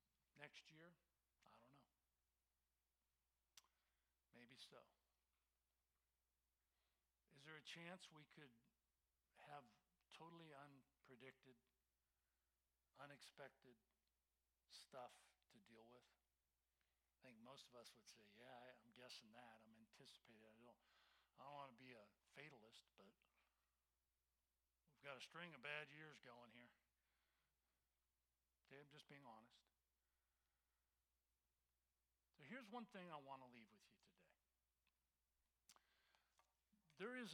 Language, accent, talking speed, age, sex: English, American, 110 wpm, 60-79, male